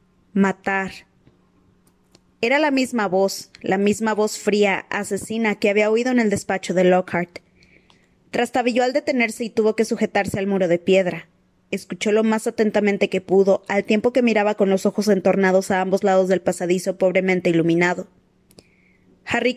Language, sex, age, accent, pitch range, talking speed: Spanish, female, 20-39, Mexican, 185-225 Hz, 155 wpm